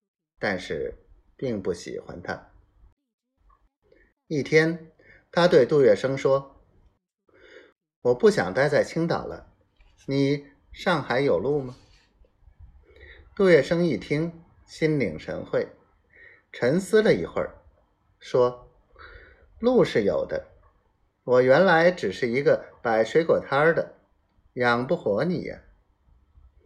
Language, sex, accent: Chinese, male, native